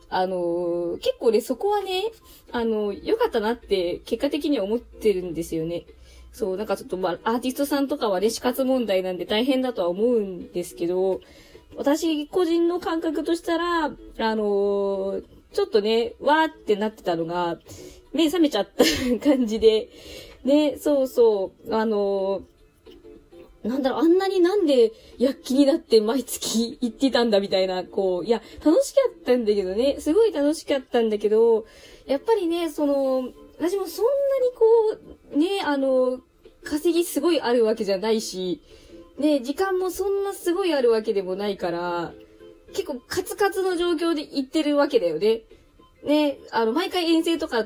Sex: female